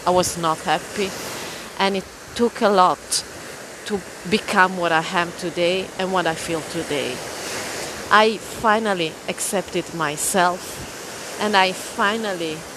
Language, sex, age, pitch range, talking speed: Italian, female, 30-49, 180-230 Hz, 125 wpm